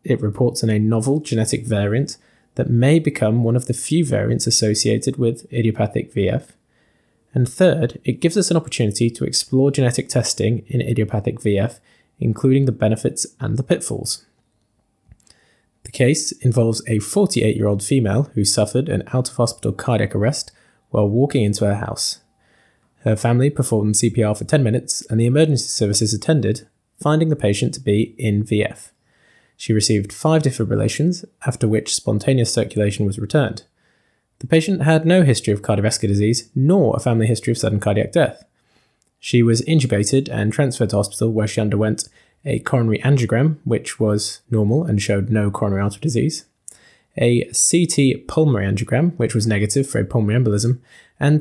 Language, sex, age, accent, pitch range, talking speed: English, male, 20-39, British, 110-135 Hz, 160 wpm